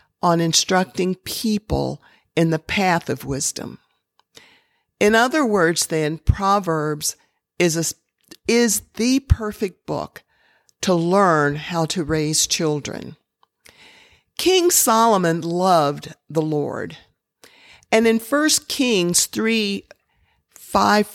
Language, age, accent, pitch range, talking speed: English, 50-69, American, 170-225 Hz, 100 wpm